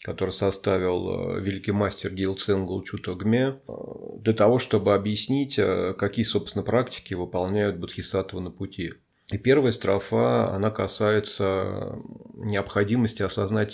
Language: Russian